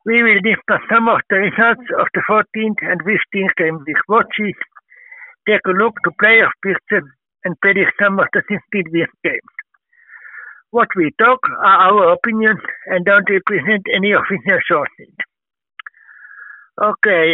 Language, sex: Finnish, male